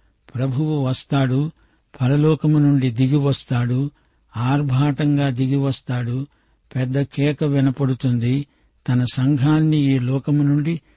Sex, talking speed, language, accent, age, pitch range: male, 80 wpm, Telugu, native, 60-79, 130-150 Hz